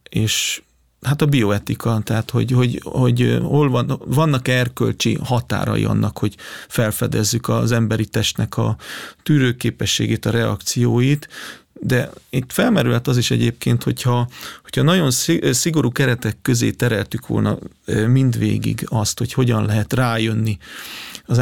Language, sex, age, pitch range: Hungarian, male, 40-59, 110-130 Hz